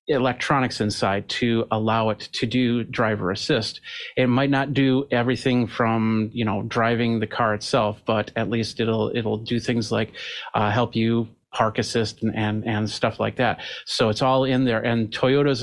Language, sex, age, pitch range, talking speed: English, male, 40-59, 110-125 Hz, 180 wpm